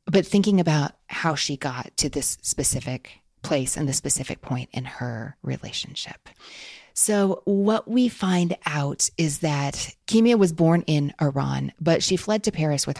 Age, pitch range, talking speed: 30-49, 135-170 Hz, 160 wpm